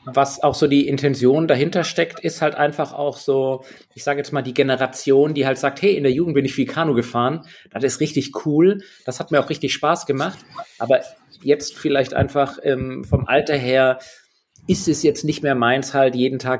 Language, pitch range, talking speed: German, 125-150 Hz, 210 wpm